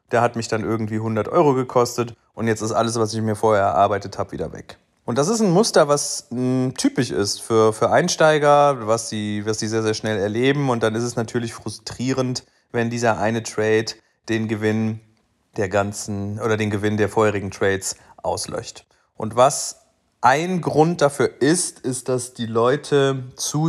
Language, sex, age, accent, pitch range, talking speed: German, male, 30-49, German, 105-130 Hz, 175 wpm